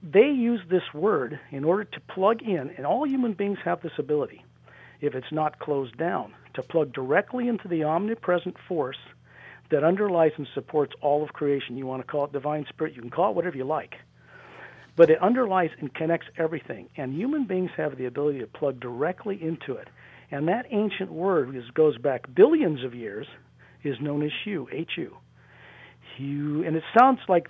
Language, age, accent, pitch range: English, 50-69, American, 135-165 Hz